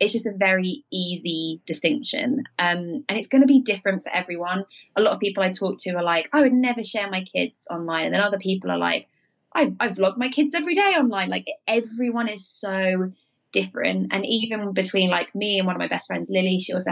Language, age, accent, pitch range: English, 20-39, British, 180-240 Hz